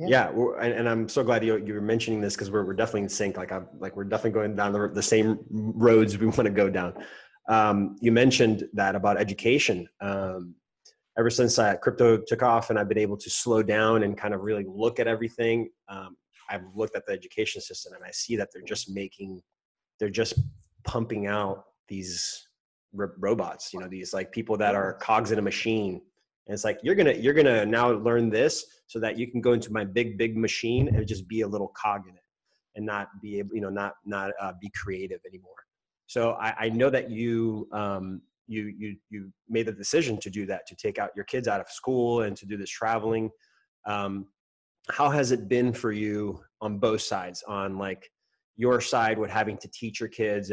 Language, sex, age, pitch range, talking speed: English, male, 30-49, 100-115 Hz, 210 wpm